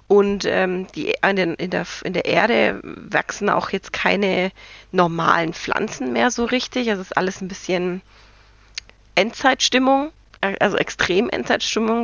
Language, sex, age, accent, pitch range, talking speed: German, female, 30-49, German, 185-230 Hz, 125 wpm